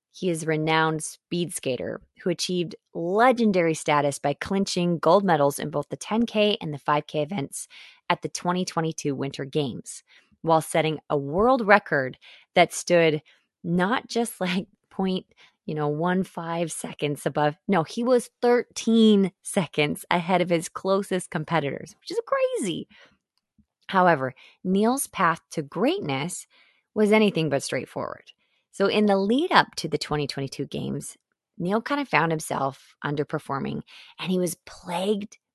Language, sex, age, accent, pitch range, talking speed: English, female, 20-39, American, 155-210 Hz, 140 wpm